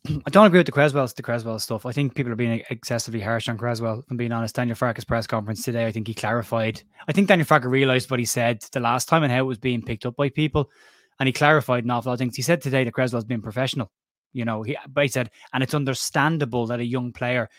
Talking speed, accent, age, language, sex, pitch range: 265 wpm, Irish, 20-39, English, male, 120-135 Hz